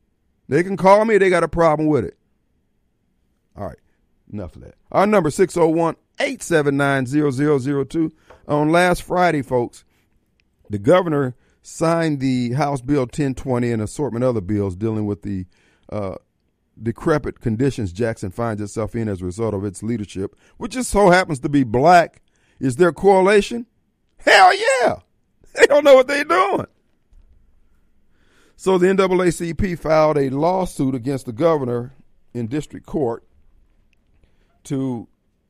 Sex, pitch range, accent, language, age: male, 105-160 Hz, American, Japanese, 50-69